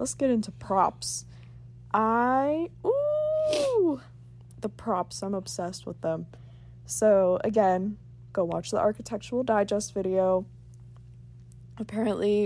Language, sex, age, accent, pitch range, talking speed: English, female, 20-39, American, 120-205 Hz, 100 wpm